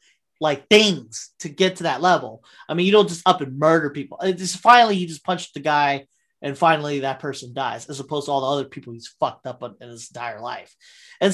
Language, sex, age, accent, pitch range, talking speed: English, male, 30-49, American, 160-230 Hz, 235 wpm